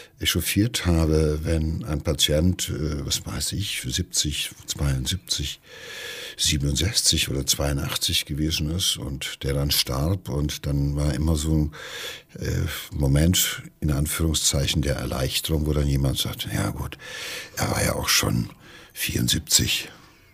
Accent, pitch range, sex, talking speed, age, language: German, 70-90 Hz, male, 125 wpm, 60-79, German